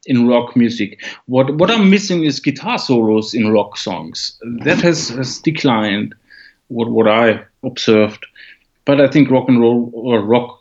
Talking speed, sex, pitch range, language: 165 wpm, male, 115-140 Hz, English